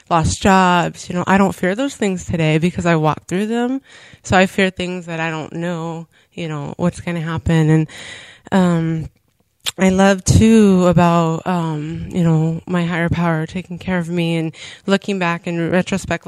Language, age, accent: English, 20-39, American